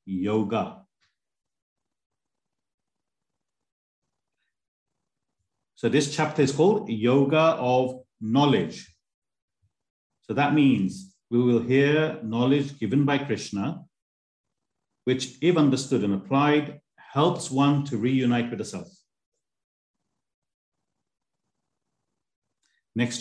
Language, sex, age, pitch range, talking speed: English, male, 50-69, 110-140 Hz, 85 wpm